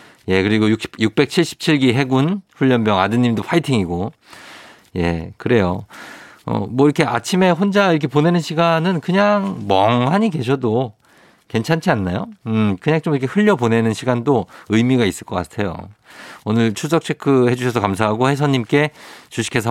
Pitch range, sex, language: 100-150 Hz, male, Korean